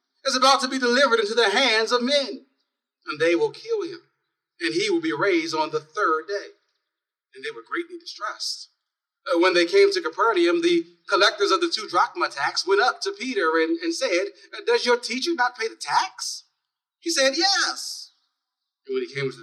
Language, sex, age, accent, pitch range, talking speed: English, male, 30-49, American, 260-410 Hz, 195 wpm